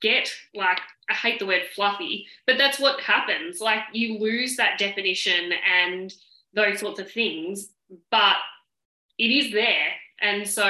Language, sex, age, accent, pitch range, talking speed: English, female, 10-29, Australian, 185-215 Hz, 150 wpm